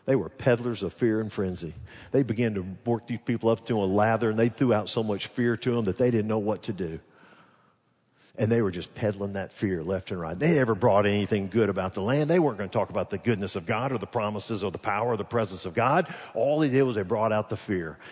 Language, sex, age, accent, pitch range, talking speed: English, male, 50-69, American, 100-130 Hz, 270 wpm